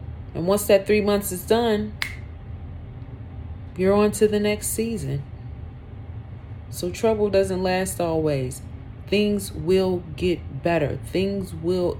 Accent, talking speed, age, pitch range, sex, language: American, 120 wpm, 30-49, 115-170 Hz, female, English